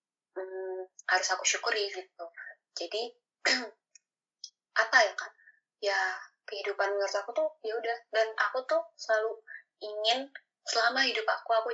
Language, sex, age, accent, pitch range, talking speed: Indonesian, female, 20-39, native, 185-220 Hz, 130 wpm